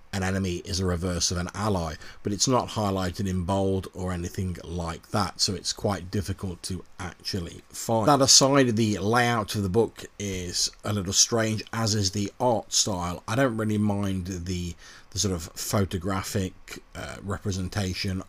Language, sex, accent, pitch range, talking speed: English, male, British, 90-110 Hz, 165 wpm